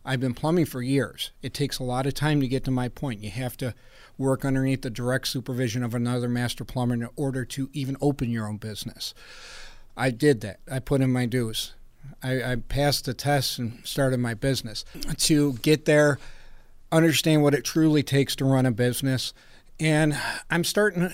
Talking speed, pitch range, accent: 195 wpm, 130-150 Hz, American